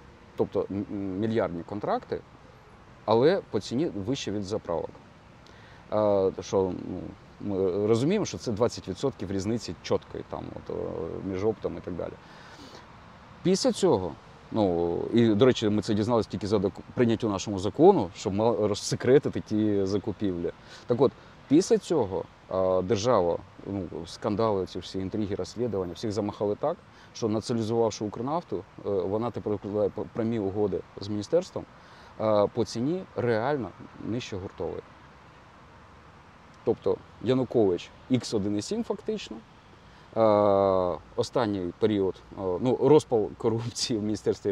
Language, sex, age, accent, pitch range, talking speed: Ukrainian, male, 30-49, native, 95-115 Hz, 115 wpm